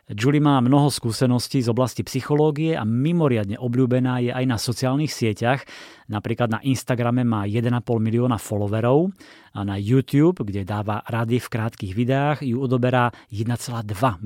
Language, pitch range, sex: Slovak, 110-130 Hz, male